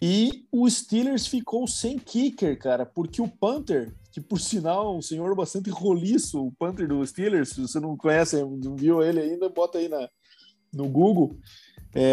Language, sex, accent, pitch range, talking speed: Portuguese, male, Brazilian, 140-200 Hz, 175 wpm